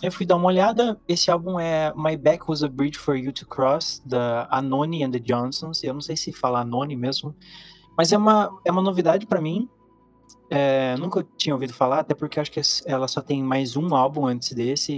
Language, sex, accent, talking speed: Portuguese, male, Brazilian, 210 wpm